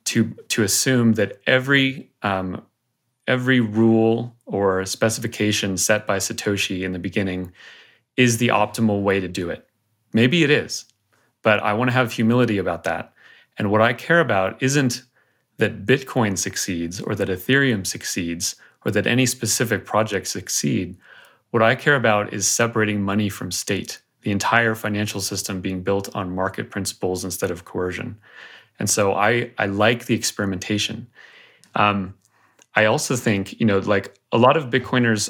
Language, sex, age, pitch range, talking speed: English, male, 30-49, 100-115 Hz, 155 wpm